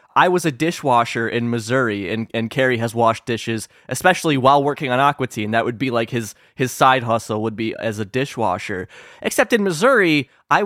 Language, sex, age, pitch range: English, male, 20-39, 120-150 Hz